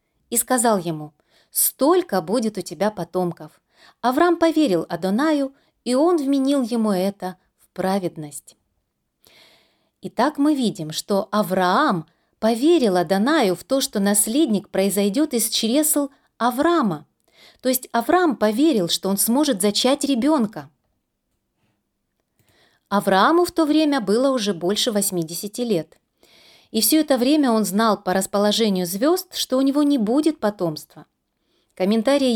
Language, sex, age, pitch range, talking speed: Russian, female, 30-49, 190-265 Hz, 125 wpm